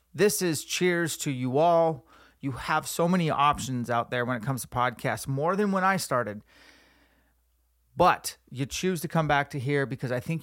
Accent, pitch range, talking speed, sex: American, 130-160 Hz, 195 wpm, male